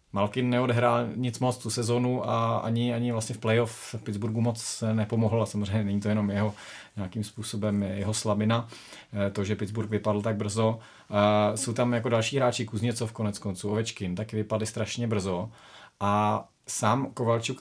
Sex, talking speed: male, 160 wpm